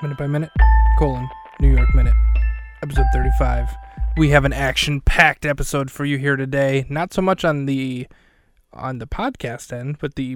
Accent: American